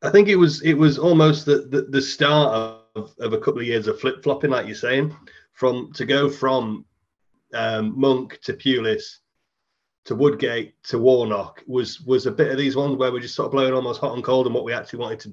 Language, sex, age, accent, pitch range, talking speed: English, male, 30-49, British, 115-135 Hz, 225 wpm